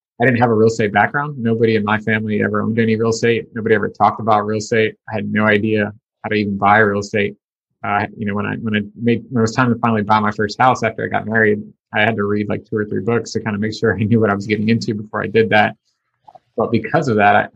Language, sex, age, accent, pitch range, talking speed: English, male, 30-49, American, 105-115 Hz, 285 wpm